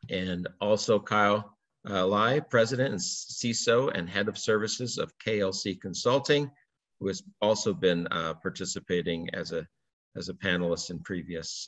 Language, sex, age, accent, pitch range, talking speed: English, male, 50-69, American, 95-125 Hz, 145 wpm